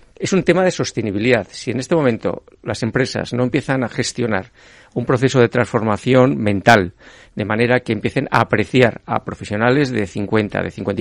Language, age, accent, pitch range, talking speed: Spanish, 50-69, Spanish, 110-130 Hz, 175 wpm